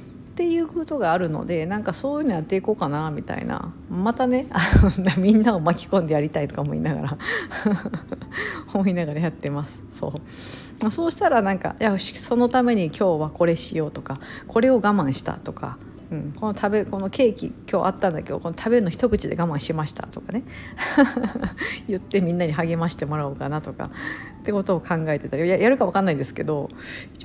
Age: 50-69